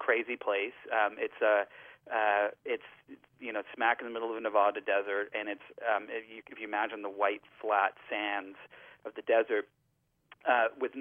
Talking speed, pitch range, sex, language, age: 185 wpm, 100-135 Hz, male, English, 40-59